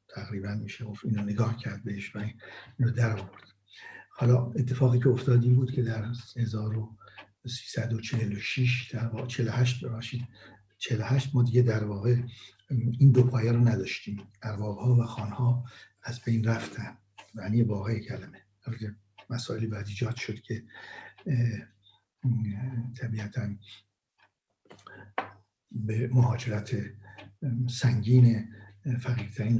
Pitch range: 110-125 Hz